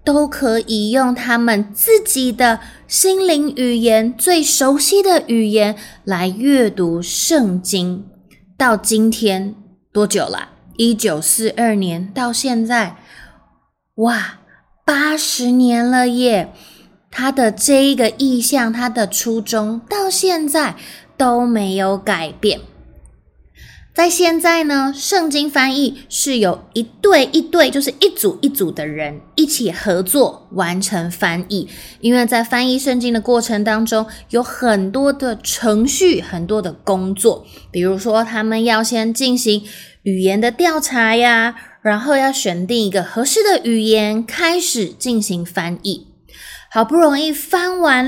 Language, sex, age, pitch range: Chinese, female, 20-39, 210-275 Hz